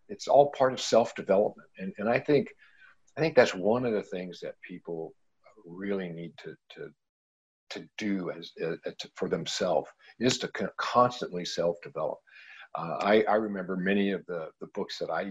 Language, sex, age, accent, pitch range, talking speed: English, male, 50-69, American, 90-110 Hz, 175 wpm